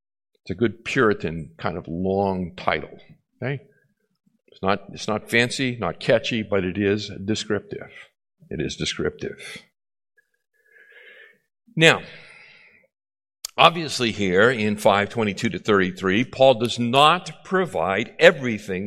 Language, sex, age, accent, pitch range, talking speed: English, male, 50-69, American, 100-135 Hz, 105 wpm